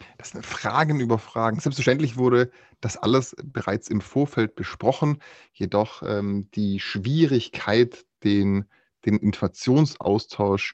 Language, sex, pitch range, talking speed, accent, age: German, male, 105-125 Hz, 110 wpm, German, 30-49